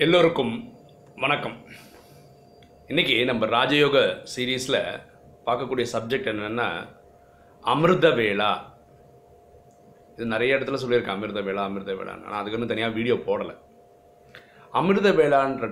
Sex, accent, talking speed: male, native, 90 wpm